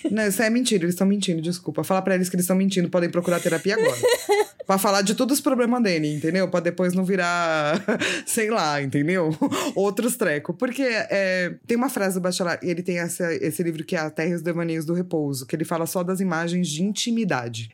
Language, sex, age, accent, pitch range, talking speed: Portuguese, female, 20-39, Brazilian, 175-250 Hz, 225 wpm